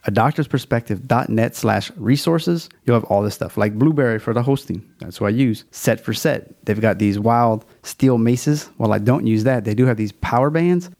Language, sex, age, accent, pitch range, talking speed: English, male, 30-49, American, 110-130 Hz, 205 wpm